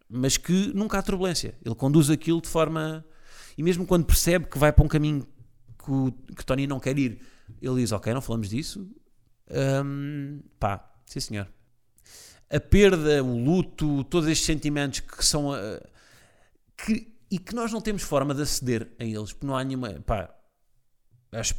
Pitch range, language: 115-145 Hz, Portuguese